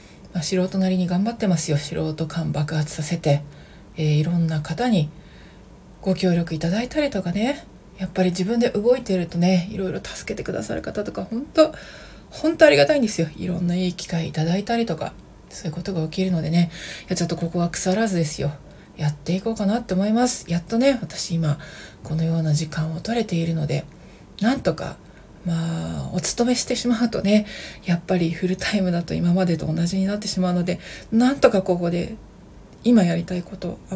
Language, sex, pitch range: Japanese, female, 170-220 Hz